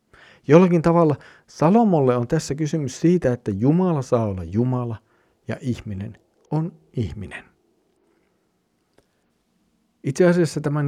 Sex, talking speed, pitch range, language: male, 105 wpm, 110-150 Hz, Finnish